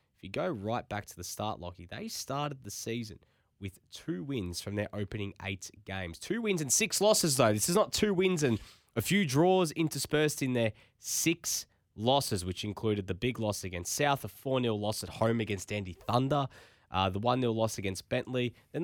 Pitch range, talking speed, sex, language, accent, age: 105-130 Hz, 200 wpm, male, English, Australian, 10-29